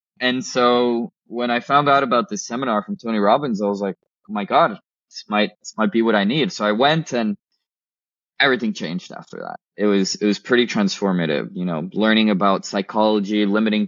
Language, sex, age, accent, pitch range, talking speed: English, male, 20-39, Canadian, 100-125 Hz, 200 wpm